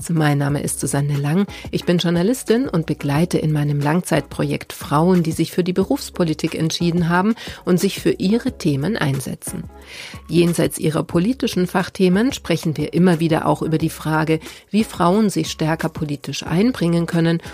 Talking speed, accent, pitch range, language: 155 wpm, German, 150-185 Hz, German